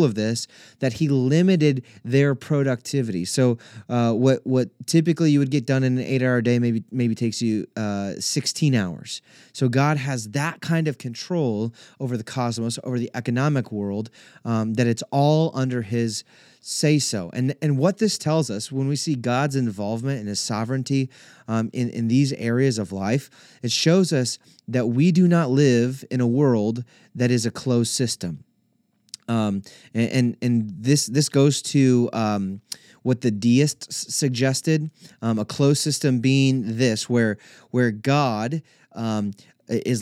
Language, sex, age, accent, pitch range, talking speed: English, male, 30-49, American, 115-140 Hz, 165 wpm